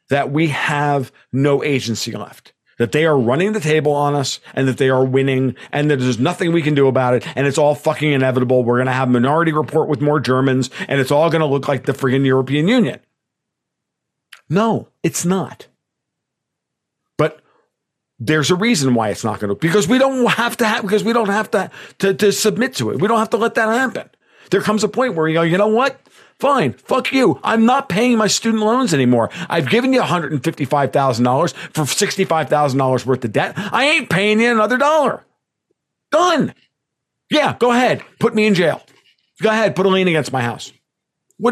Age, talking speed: 50-69, 200 wpm